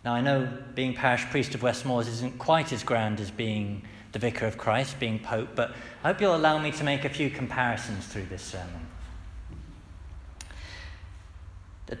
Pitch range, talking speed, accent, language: 105-155 Hz, 175 wpm, British, English